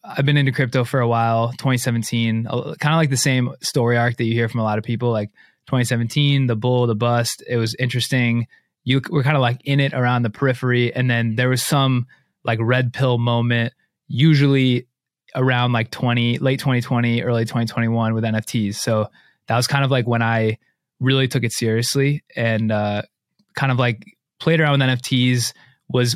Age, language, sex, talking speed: 20-39, English, male, 190 wpm